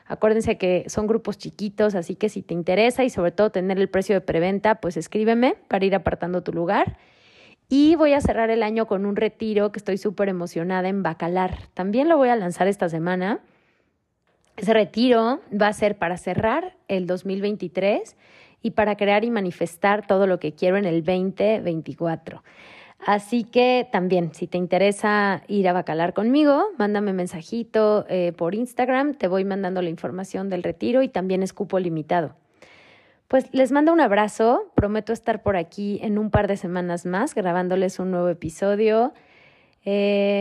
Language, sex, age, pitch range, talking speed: Spanish, female, 20-39, 180-220 Hz, 170 wpm